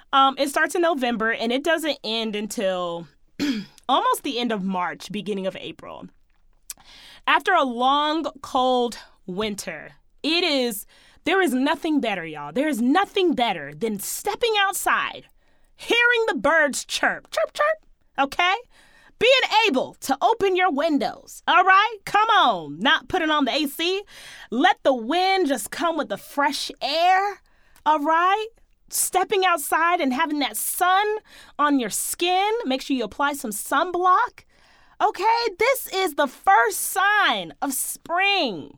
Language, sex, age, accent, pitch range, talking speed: English, female, 20-39, American, 240-360 Hz, 145 wpm